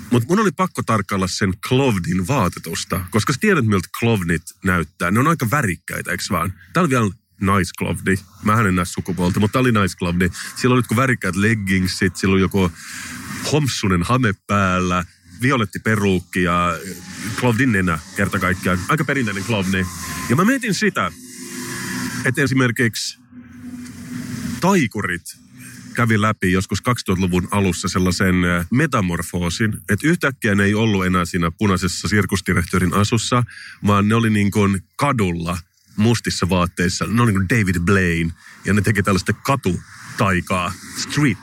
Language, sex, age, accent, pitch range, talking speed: Finnish, male, 30-49, native, 90-115 Hz, 140 wpm